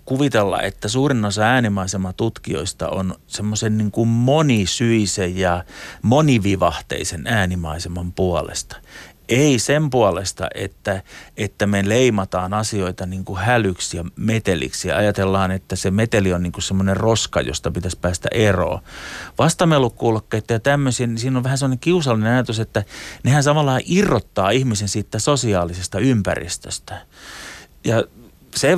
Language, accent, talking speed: Finnish, native, 120 wpm